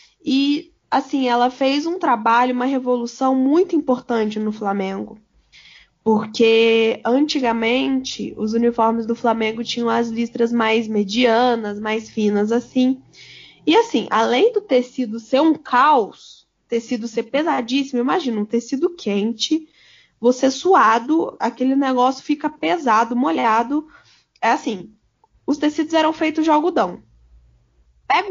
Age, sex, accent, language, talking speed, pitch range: 10-29, female, Brazilian, Portuguese, 120 wpm, 230-285 Hz